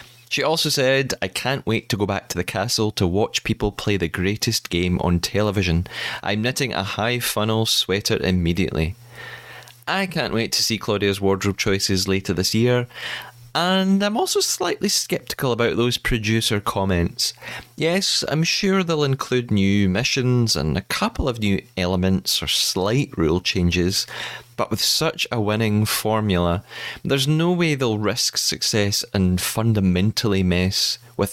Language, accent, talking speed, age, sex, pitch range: English, British, 155 wpm, 30-49, male, 100-140 Hz